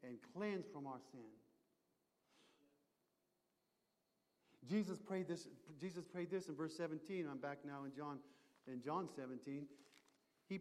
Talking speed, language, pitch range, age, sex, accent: 130 wpm, English, 165-235 Hz, 50-69, male, American